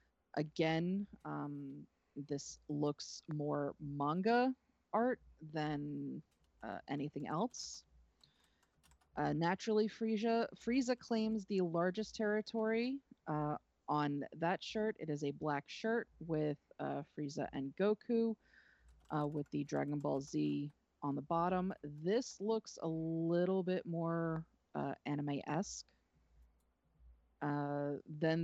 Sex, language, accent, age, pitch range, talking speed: female, English, American, 30-49, 145-195 Hz, 110 wpm